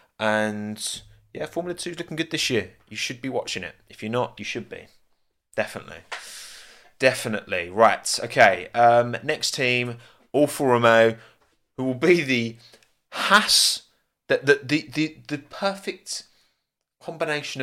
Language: English